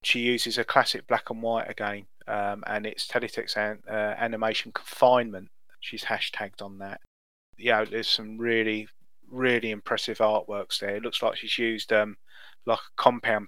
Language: English